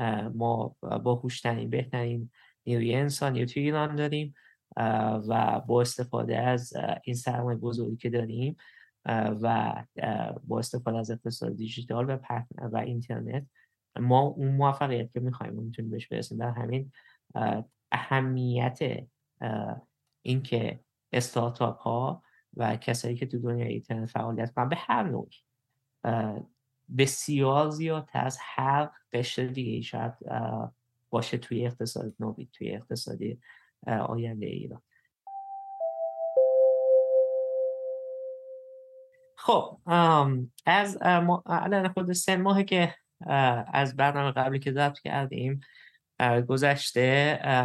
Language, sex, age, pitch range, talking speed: Persian, male, 20-39, 120-145 Hz, 105 wpm